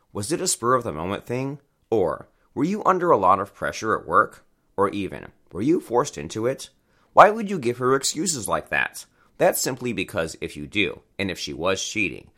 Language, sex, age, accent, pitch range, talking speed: English, male, 30-49, American, 90-130 Hz, 200 wpm